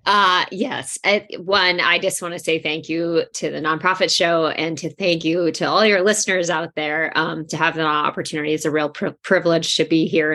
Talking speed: 210 wpm